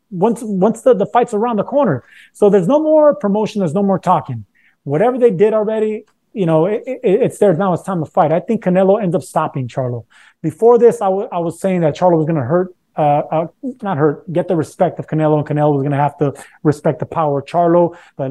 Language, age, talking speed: English, 30-49, 245 wpm